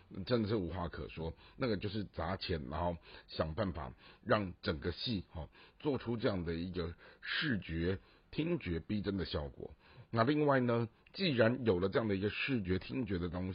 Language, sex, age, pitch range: Chinese, male, 60-79, 85-120 Hz